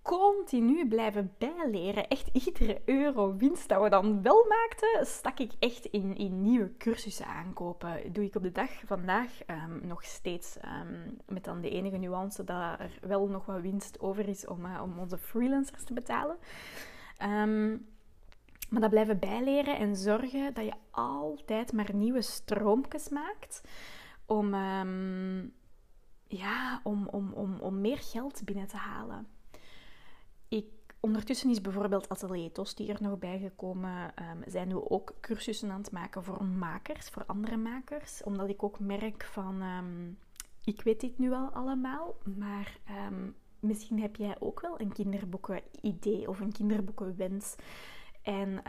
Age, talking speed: 20-39, 150 wpm